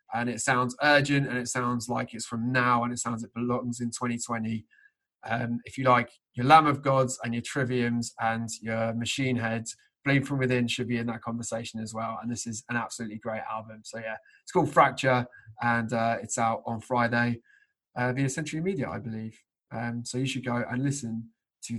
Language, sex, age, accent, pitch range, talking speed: English, male, 20-39, British, 120-145 Hz, 205 wpm